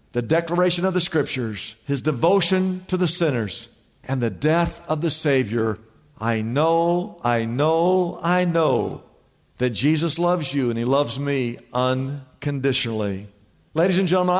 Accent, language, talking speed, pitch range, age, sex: American, English, 140 wpm, 150-205 Hz, 50-69, male